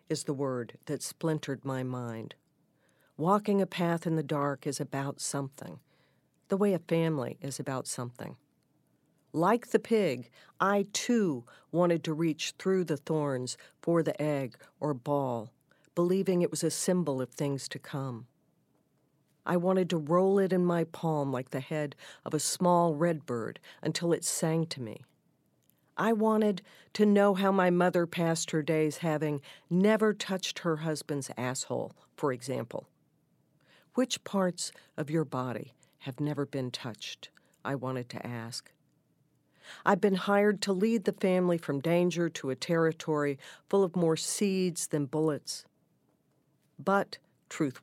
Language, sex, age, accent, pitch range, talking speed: English, female, 50-69, American, 140-180 Hz, 150 wpm